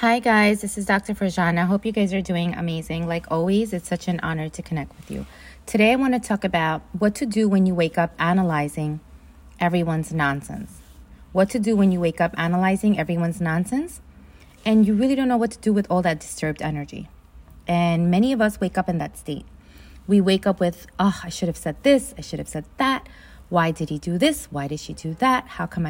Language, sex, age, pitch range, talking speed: English, female, 30-49, 155-220 Hz, 225 wpm